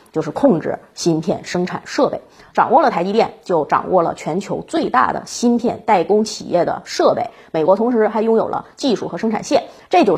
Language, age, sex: Chinese, 30-49, female